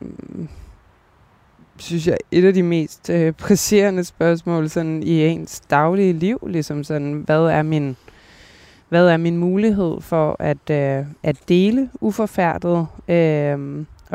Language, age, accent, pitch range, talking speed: Danish, 20-39, native, 155-190 Hz, 125 wpm